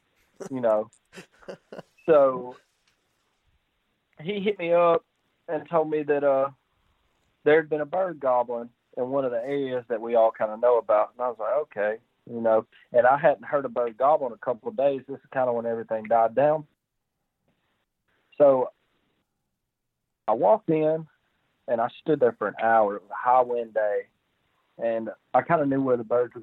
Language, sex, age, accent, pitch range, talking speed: English, male, 40-59, American, 115-140 Hz, 190 wpm